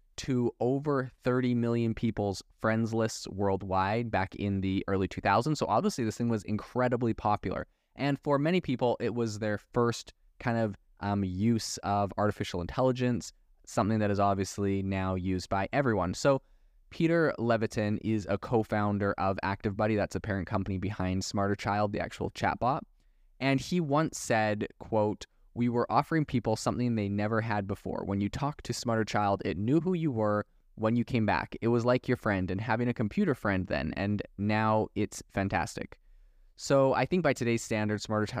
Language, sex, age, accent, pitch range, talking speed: English, male, 20-39, American, 100-120 Hz, 175 wpm